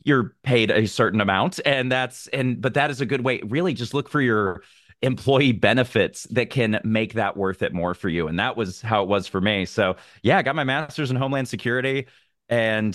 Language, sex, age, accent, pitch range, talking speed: English, male, 30-49, American, 95-120 Hz, 220 wpm